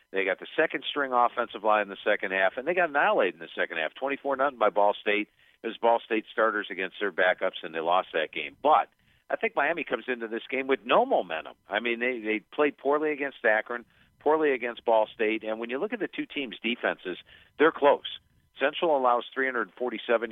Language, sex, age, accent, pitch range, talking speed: English, male, 50-69, American, 110-135 Hz, 215 wpm